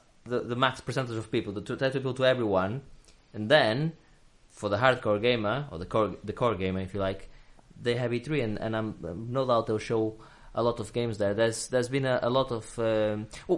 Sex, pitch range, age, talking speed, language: male, 110-130 Hz, 20-39, 220 wpm, English